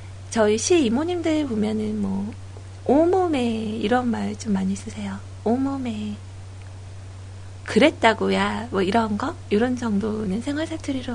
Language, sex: Korean, female